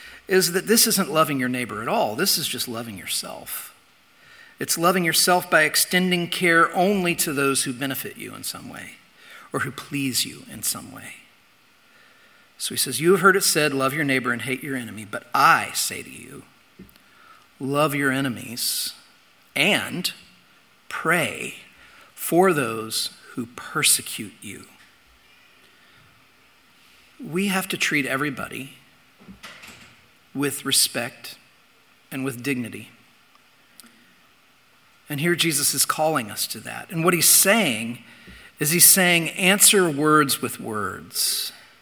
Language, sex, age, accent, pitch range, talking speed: English, male, 50-69, American, 130-175 Hz, 135 wpm